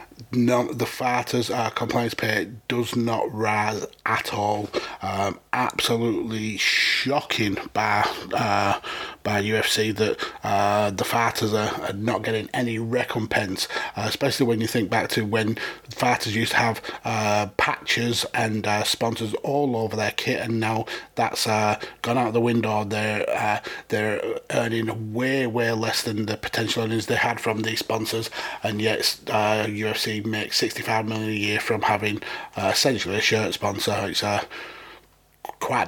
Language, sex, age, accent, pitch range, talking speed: English, male, 30-49, British, 110-120 Hz, 150 wpm